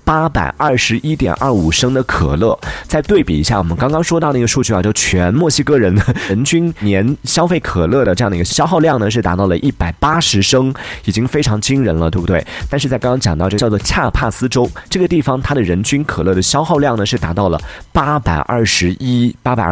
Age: 30-49